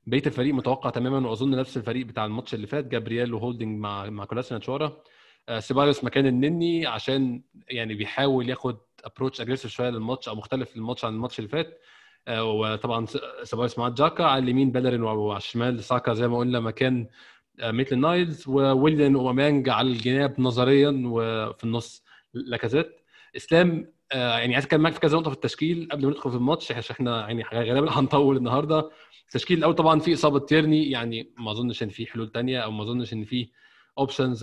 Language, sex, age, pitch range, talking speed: Arabic, male, 20-39, 120-145 Hz, 170 wpm